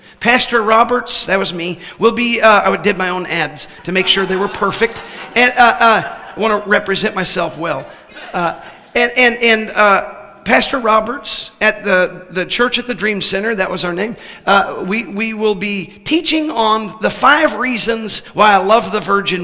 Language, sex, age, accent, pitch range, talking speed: English, male, 50-69, American, 195-245 Hz, 190 wpm